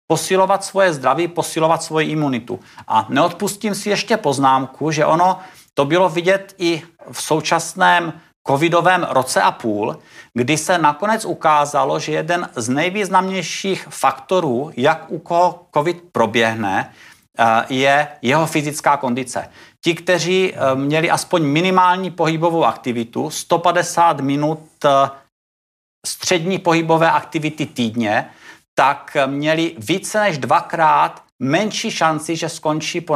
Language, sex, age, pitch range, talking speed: Czech, male, 50-69, 135-175 Hz, 115 wpm